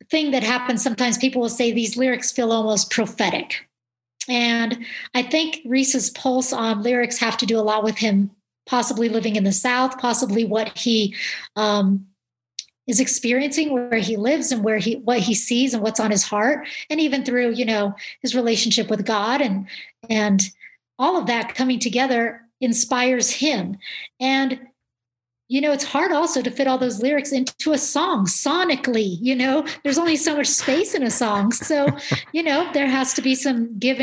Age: 40-59